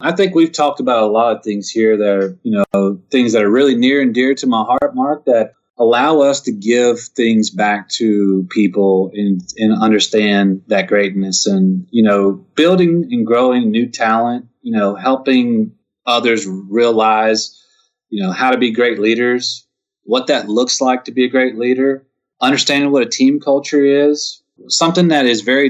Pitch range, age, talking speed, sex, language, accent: 105-135 Hz, 30-49, 180 wpm, male, English, American